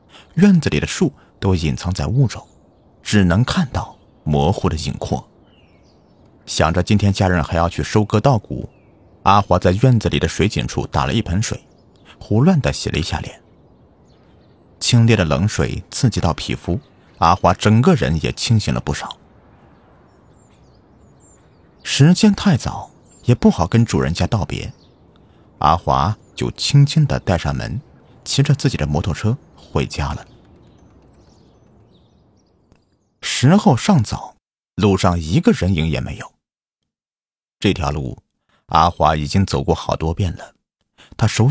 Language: Chinese